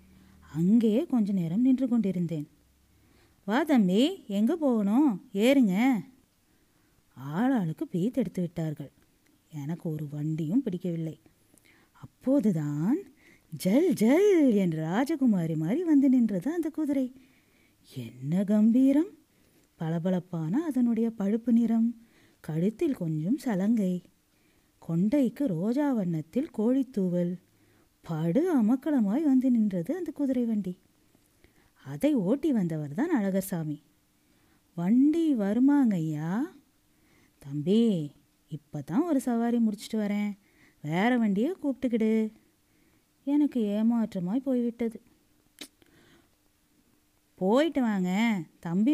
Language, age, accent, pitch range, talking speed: Tamil, 30-49, native, 170-260 Hz, 85 wpm